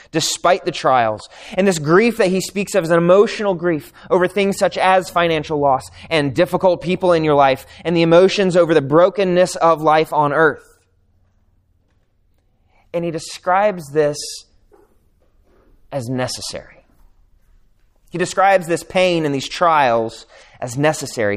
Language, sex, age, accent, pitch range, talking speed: English, male, 20-39, American, 115-175 Hz, 145 wpm